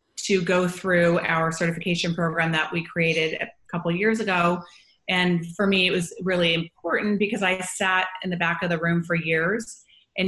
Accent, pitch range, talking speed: American, 165-185 Hz, 195 wpm